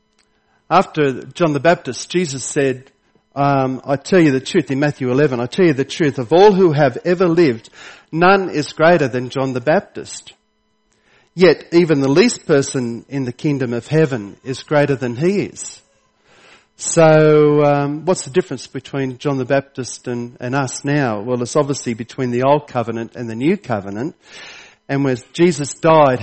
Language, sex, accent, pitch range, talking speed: English, male, Australian, 125-155 Hz, 175 wpm